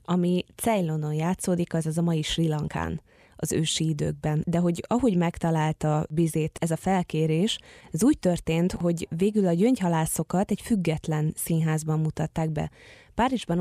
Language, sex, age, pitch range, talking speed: Hungarian, female, 20-39, 160-190 Hz, 145 wpm